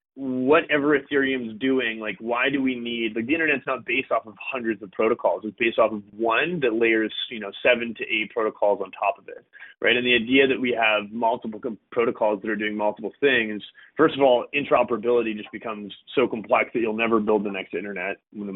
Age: 30-49